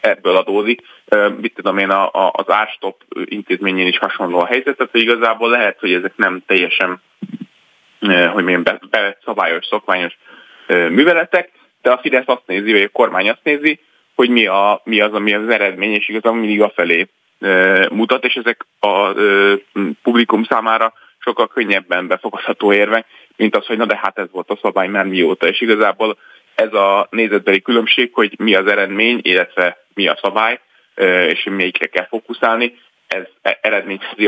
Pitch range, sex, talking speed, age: 100-120 Hz, male, 160 wpm, 20-39